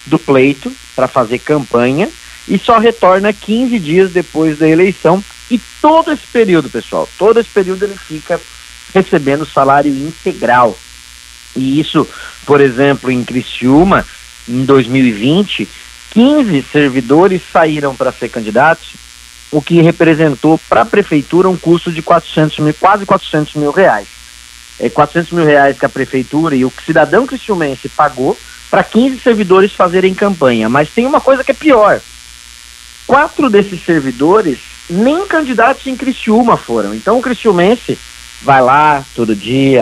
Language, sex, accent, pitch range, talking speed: Portuguese, male, Brazilian, 130-185 Hz, 140 wpm